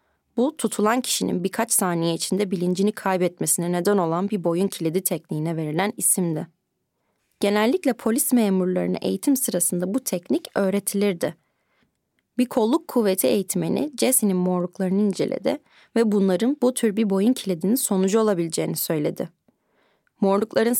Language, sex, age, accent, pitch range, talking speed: Turkish, female, 30-49, native, 180-225 Hz, 120 wpm